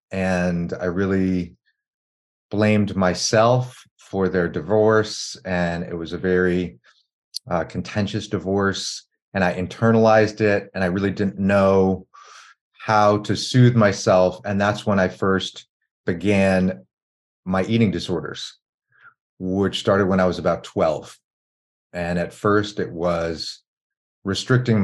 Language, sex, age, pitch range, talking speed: English, male, 30-49, 85-100 Hz, 125 wpm